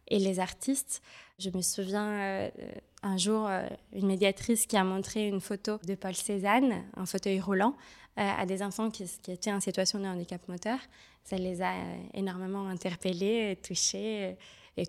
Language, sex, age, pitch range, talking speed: French, female, 20-39, 190-220 Hz, 155 wpm